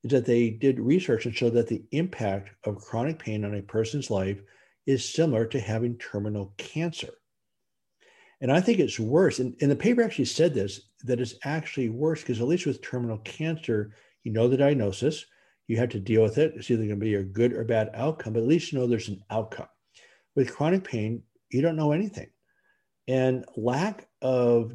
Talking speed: 200 wpm